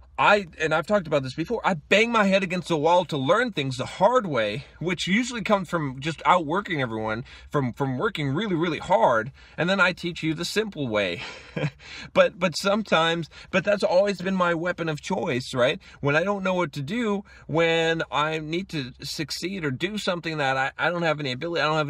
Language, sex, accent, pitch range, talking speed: English, male, American, 110-165 Hz, 215 wpm